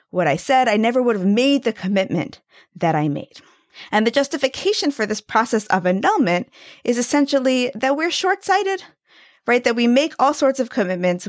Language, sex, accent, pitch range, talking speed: English, female, American, 195-275 Hz, 180 wpm